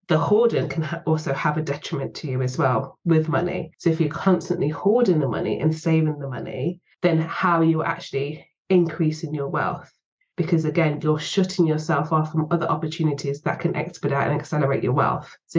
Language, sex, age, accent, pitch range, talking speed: English, female, 20-39, British, 150-175 Hz, 190 wpm